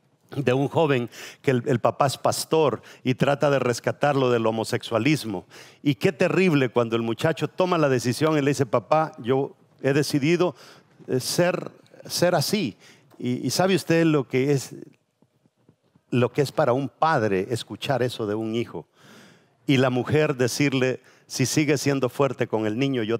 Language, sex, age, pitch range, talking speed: English, male, 50-69, 120-155 Hz, 165 wpm